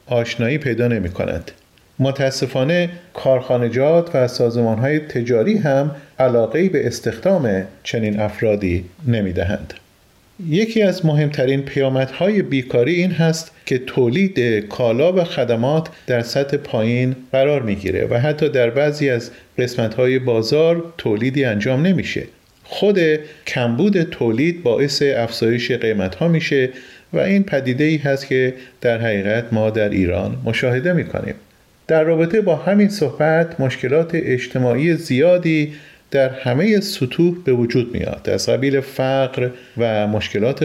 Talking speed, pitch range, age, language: 130 wpm, 120-155 Hz, 40-59, Persian